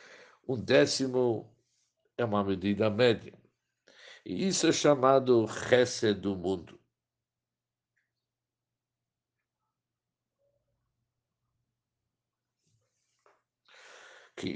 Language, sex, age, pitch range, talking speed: Portuguese, male, 60-79, 105-130 Hz, 60 wpm